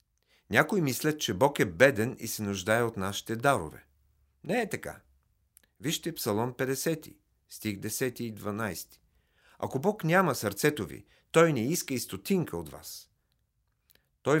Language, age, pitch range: Bulgarian, 50-69, 105-145 Hz